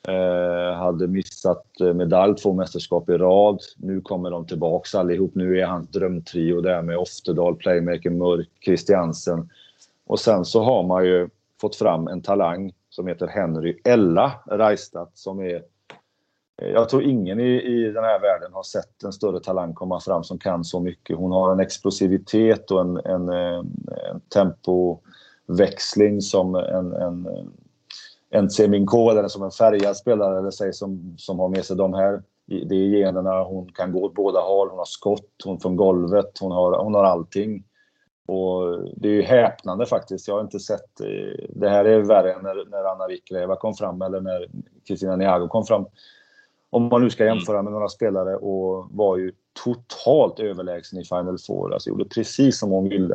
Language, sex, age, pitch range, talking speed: Swedish, male, 30-49, 90-100 Hz, 175 wpm